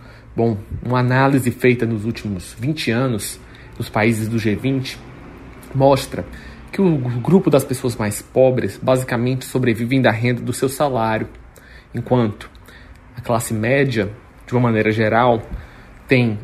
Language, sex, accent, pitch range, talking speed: Portuguese, male, Brazilian, 115-135 Hz, 130 wpm